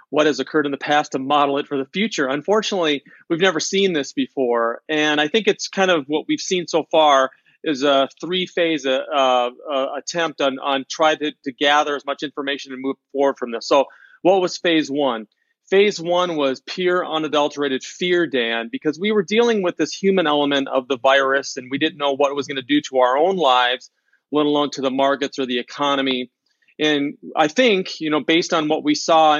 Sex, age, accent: male, 40-59, American